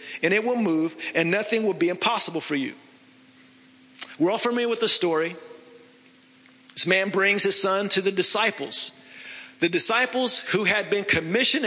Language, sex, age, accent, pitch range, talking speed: English, male, 40-59, American, 185-250 Hz, 160 wpm